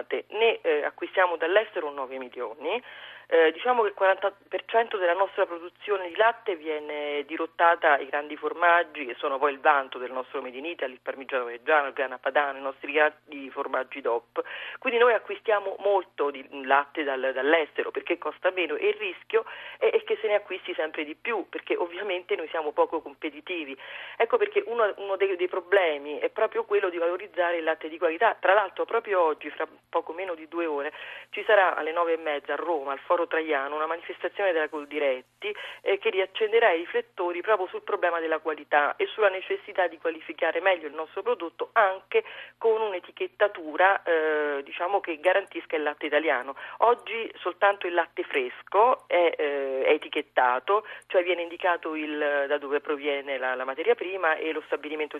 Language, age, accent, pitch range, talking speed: Italian, 40-59, native, 150-200 Hz, 175 wpm